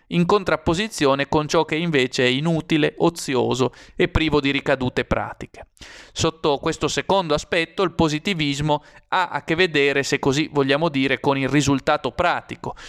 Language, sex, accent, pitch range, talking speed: Italian, male, native, 135-170 Hz, 150 wpm